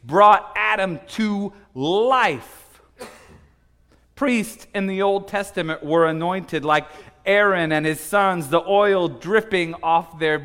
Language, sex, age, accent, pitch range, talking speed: English, male, 40-59, American, 140-195 Hz, 120 wpm